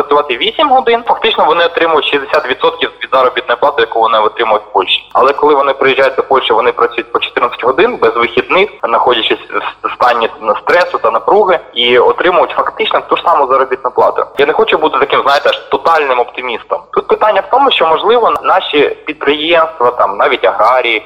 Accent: native